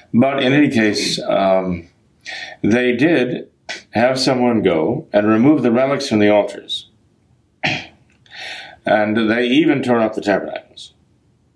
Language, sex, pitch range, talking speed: English, male, 100-120 Hz, 125 wpm